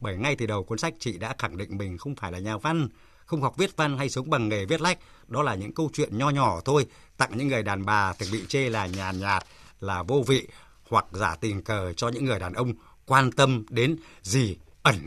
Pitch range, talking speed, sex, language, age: 110-150 Hz, 250 wpm, male, Vietnamese, 60-79